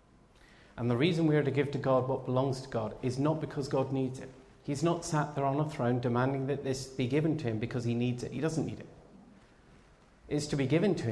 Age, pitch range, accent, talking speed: 40-59, 120-145 Hz, British, 250 wpm